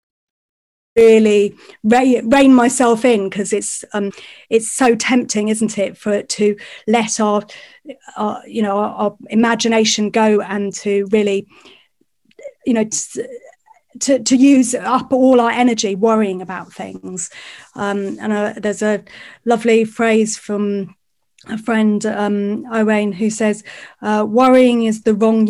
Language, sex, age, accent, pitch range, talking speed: English, female, 30-49, British, 205-235 Hz, 140 wpm